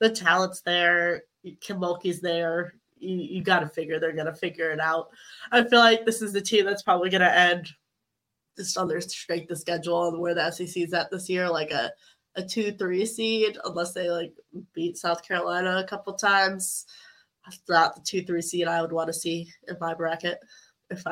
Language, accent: English, American